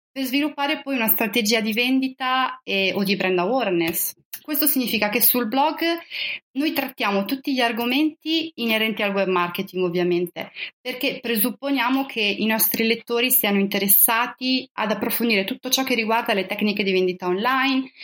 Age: 30-49